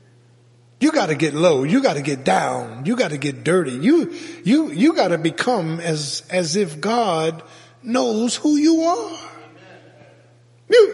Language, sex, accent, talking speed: English, male, American, 145 wpm